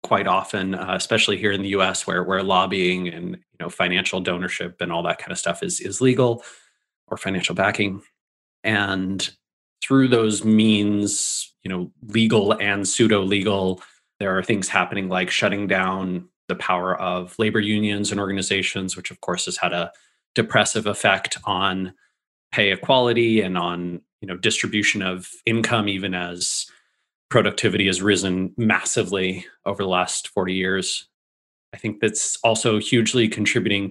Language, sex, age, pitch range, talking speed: English, male, 30-49, 95-120 Hz, 155 wpm